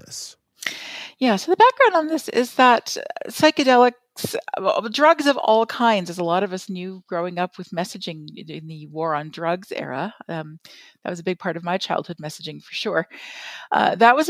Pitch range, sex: 170-230 Hz, female